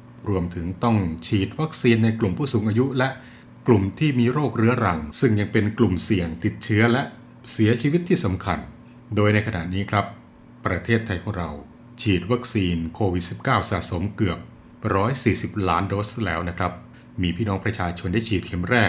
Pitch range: 95-120 Hz